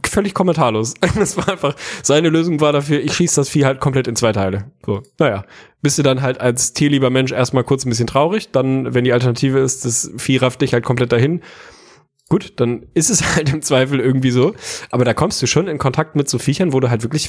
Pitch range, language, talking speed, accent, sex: 115-140 Hz, German, 235 wpm, German, male